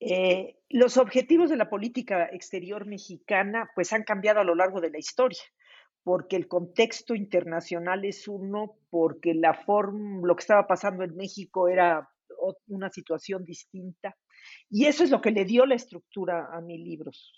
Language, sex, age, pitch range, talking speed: Spanish, female, 50-69, 180-240 Hz, 165 wpm